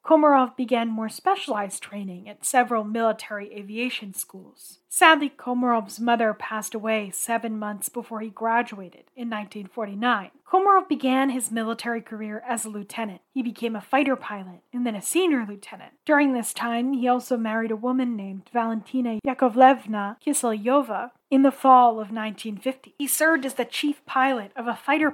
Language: English